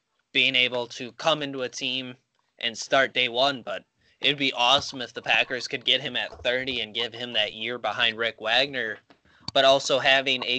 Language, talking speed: English, 200 wpm